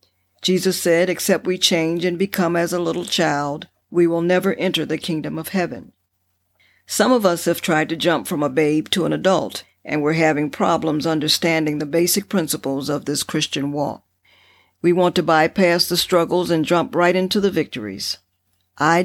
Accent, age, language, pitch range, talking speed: American, 60-79, English, 105-175 Hz, 180 wpm